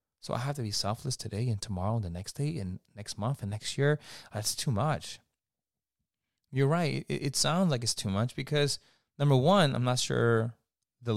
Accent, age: American, 30-49